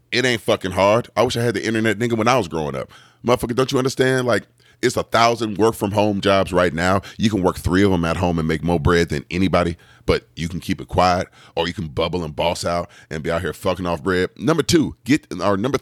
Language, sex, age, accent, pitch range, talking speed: English, male, 40-59, American, 85-120 Hz, 255 wpm